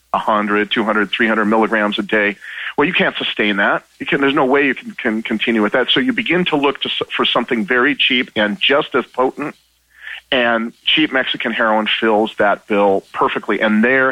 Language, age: English, 40-59